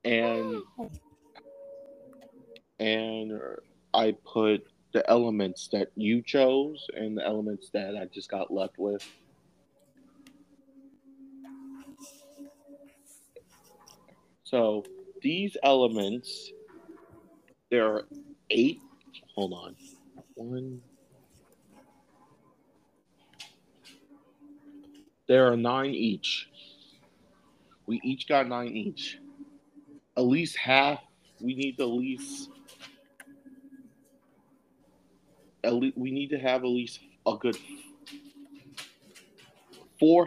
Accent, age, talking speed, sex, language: American, 40-59, 80 wpm, male, English